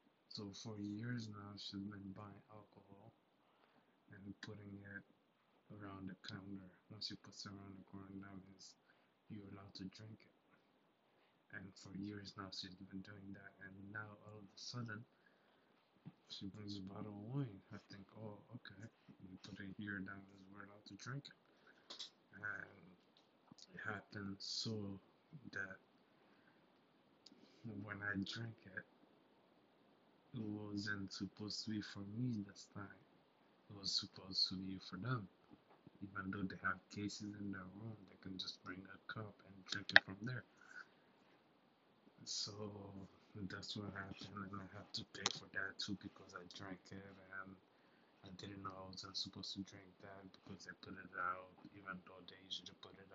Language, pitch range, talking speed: English, 95-105 Hz, 165 wpm